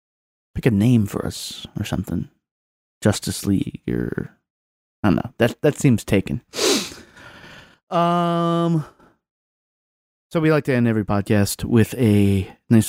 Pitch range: 105-145 Hz